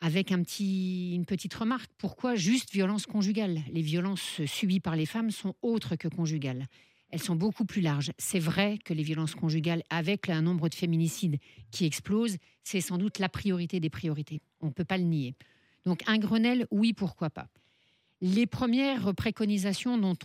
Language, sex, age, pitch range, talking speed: French, female, 50-69, 165-205 Hz, 180 wpm